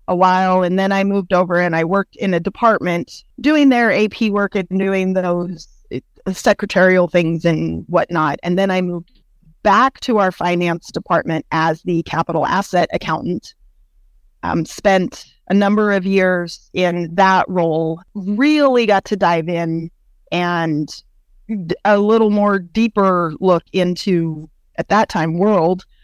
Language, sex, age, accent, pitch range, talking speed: English, female, 30-49, American, 170-205 Hz, 145 wpm